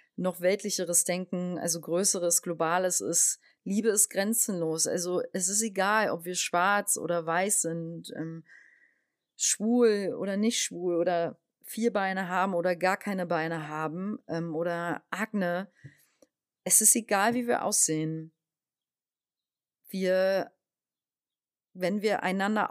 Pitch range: 170-220 Hz